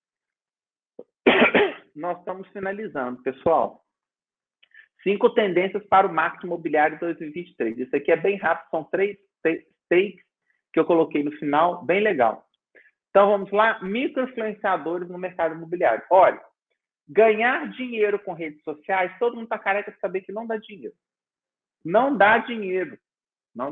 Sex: male